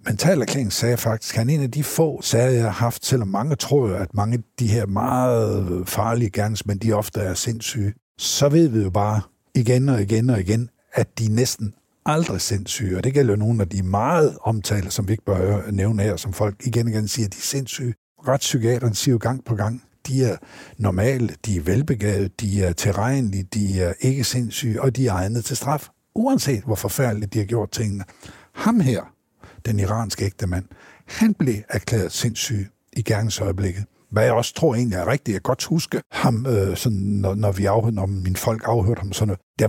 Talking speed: 210 wpm